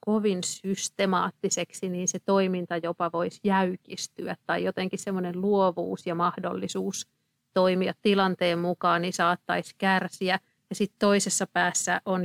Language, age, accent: Finnish, 50-69, native